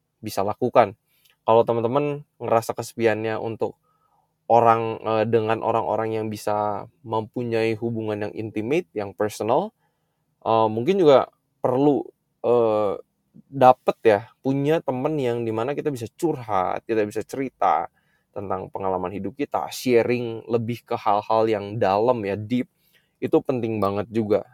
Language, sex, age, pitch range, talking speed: Indonesian, male, 20-39, 110-155 Hz, 120 wpm